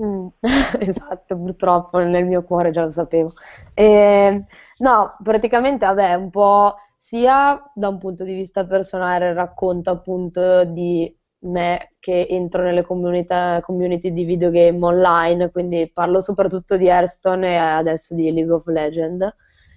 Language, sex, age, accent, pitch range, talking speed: Italian, female, 20-39, native, 175-195 Hz, 135 wpm